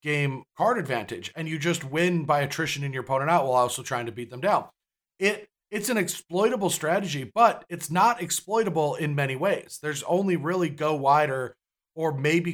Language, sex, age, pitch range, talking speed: English, male, 40-59, 140-180 Hz, 185 wpm